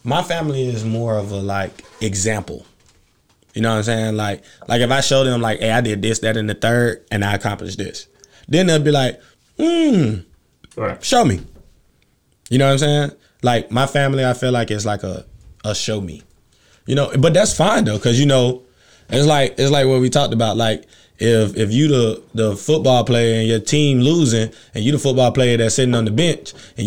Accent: American